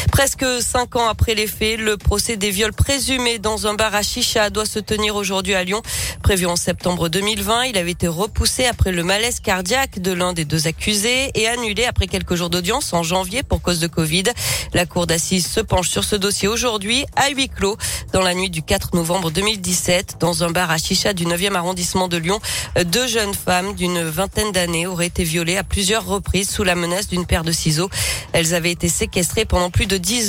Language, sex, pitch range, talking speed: French, female, 175-220 Hz, 210 wpm